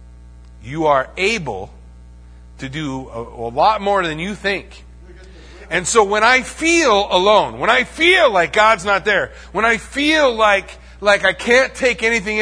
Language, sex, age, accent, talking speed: English, male, 40-59, American, 165 wpm